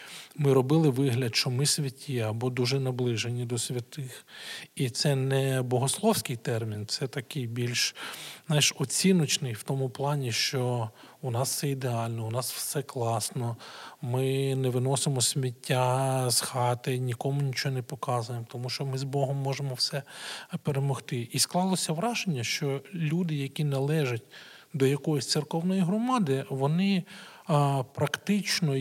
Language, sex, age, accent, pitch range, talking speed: Ukrainian, male, 40-59, native, 125-150 Hz, 135 wpm